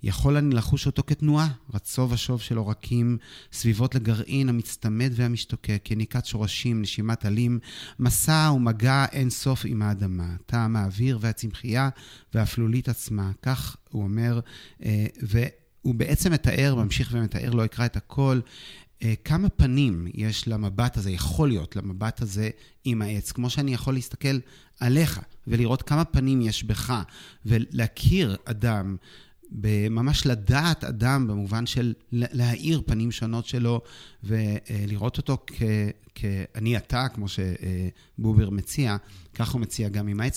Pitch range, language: 105-130 Hz, Hebrew